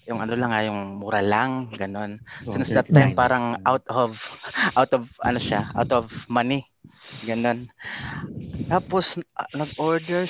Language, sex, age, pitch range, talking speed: English, male, 20-39, 120-165 Hz, 120 wpm